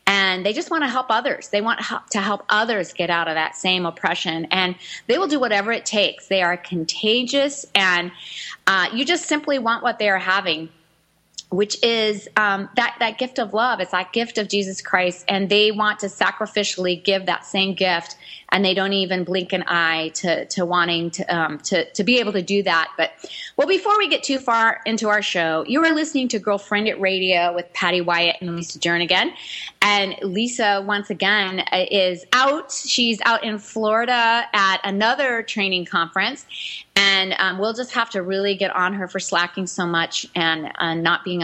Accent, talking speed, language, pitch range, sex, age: American, 195 wpm, English, 180-230 Hz, female, 30-49